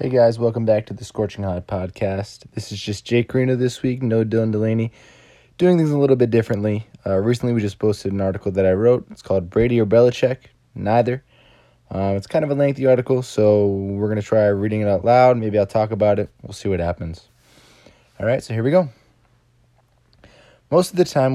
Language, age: English, 20-39